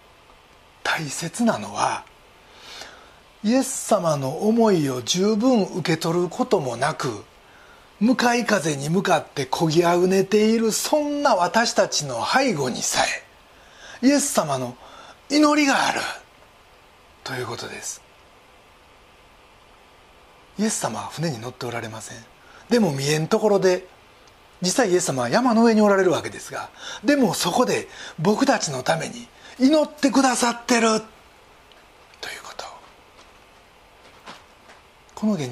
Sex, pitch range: male, 160-235 Hz